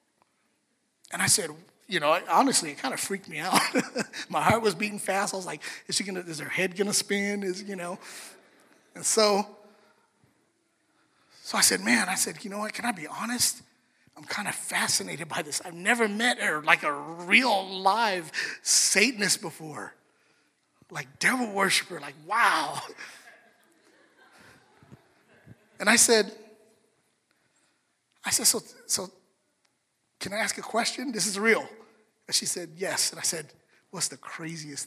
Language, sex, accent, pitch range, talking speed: English, male, American, 160-220 Hz, 160 wpm